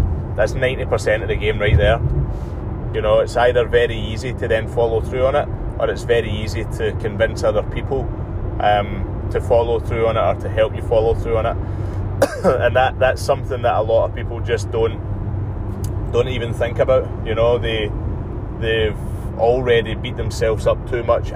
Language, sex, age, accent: English, male, 20-39, British